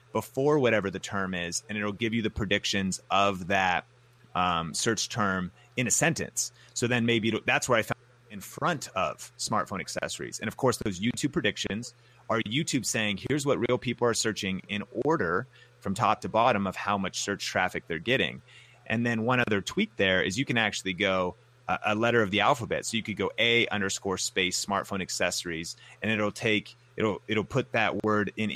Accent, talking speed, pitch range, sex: American, 200 wpm, 100-120 Hz, male